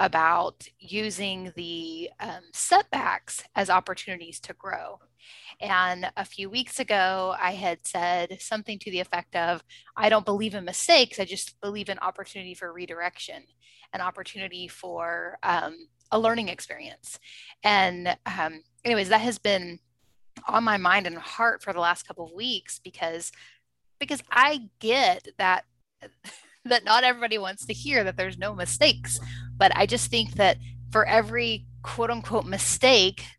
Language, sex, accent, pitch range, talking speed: English, female, American, 170-215 Hz, 150 wpm